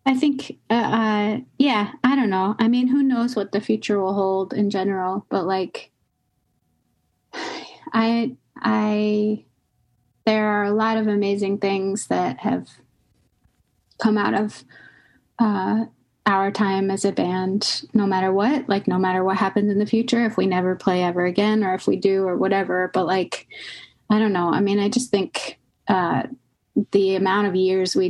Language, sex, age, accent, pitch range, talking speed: English, female, 20-39, American, 185-220 Hz, 170 wpm